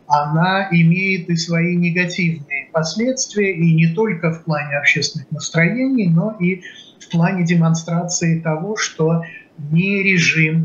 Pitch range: 160-190 Hz